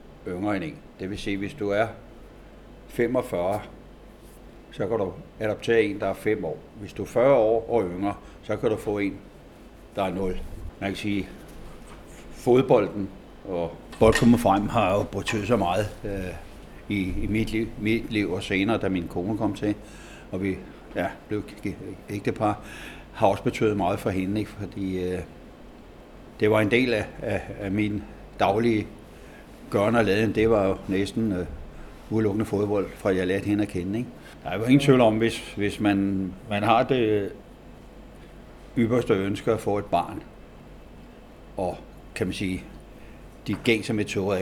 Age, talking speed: 60-79, 175 wpm